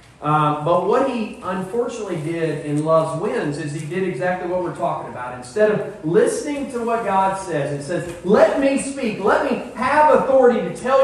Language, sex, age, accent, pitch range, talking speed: English, male, 40-59, American, 160-235 Hz, 190 wpm